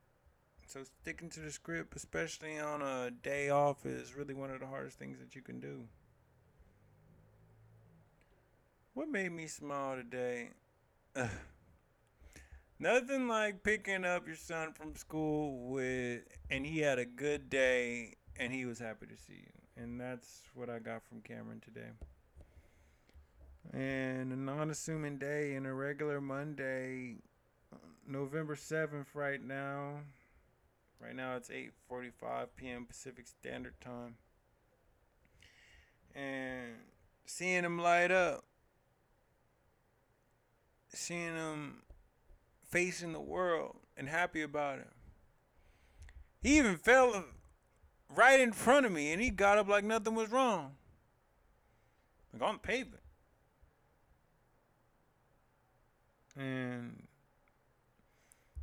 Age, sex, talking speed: 30-49, male, 115 wpm